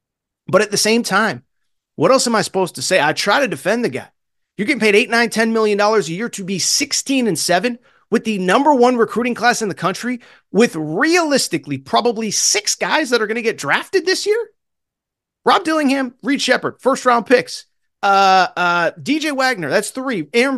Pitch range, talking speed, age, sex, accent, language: 190-270 Hz, 190 wpm, 30-49, male, American, English